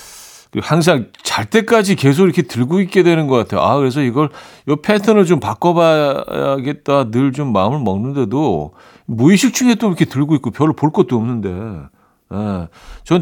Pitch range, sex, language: 115-160 Hz, male, Korean